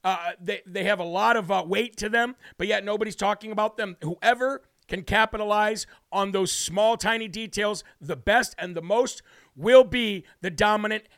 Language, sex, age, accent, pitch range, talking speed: English, male, 50-69, American, 190-225 Hz, 185 wpm